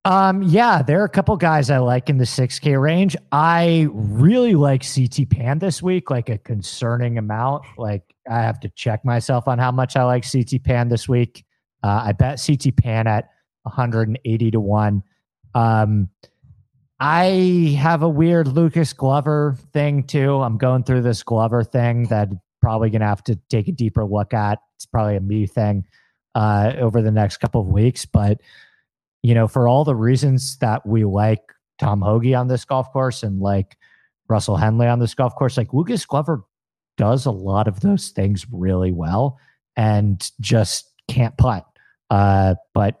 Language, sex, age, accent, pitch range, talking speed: English, male, 30-49, American, 110-140 Hz, 185 wpm